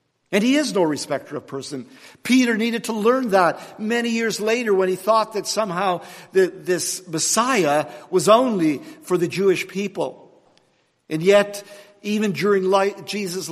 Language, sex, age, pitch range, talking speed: English, male, 50-69, 165-210 Hz, 145 wpm